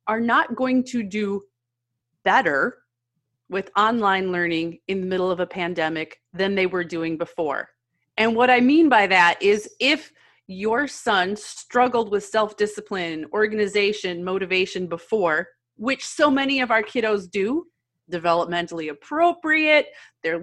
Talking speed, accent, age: 135 wpm, American, 30-49